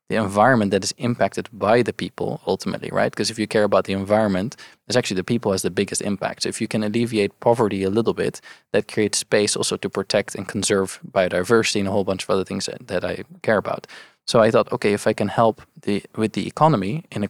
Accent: Dutch